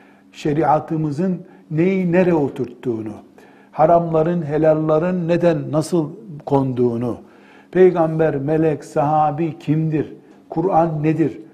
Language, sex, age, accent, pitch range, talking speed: Turkish, male, 60-79, native, 140-175 Hz, 80 wpm